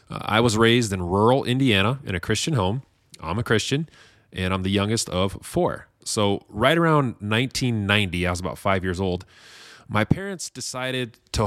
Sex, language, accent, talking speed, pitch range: male, English, American, 175 wpm, 95-120 Hz